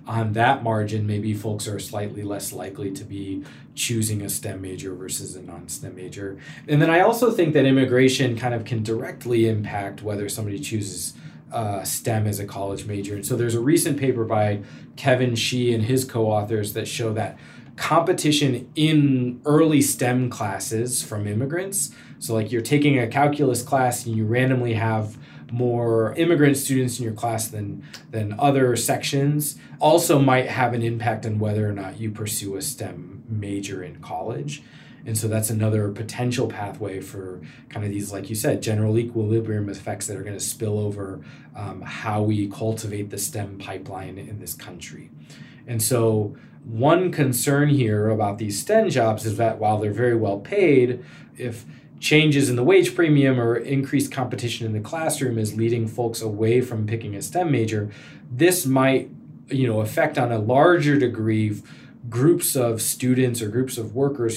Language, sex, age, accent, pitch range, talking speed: English, male, 20-39, American, 105-130 Hz, 170 wpm